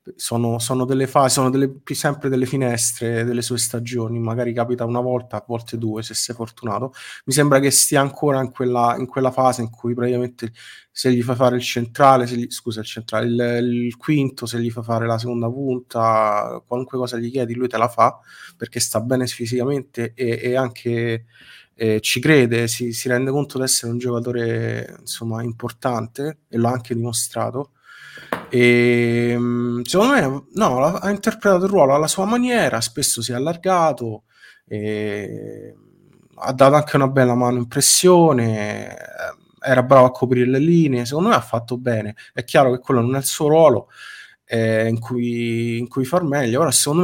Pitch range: 115-135 Hz